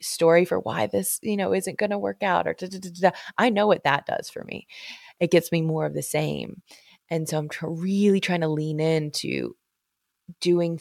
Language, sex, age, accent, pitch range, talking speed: English, female, 20-39, American, 150-195 Hz, 220 wpm